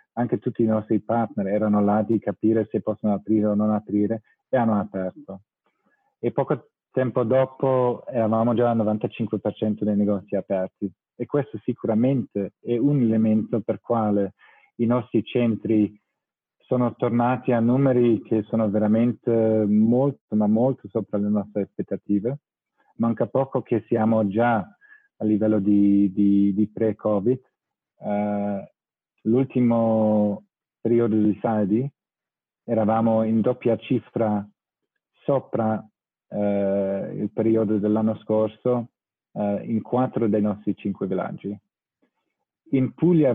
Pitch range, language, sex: 105-120 Hz, Italian, male